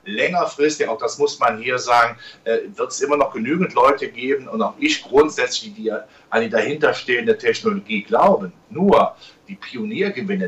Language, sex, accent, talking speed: German, male, German, 160 wpm